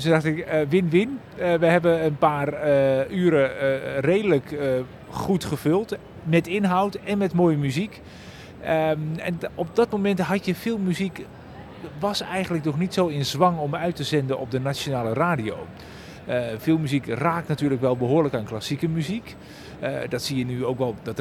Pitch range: 130-170 Hz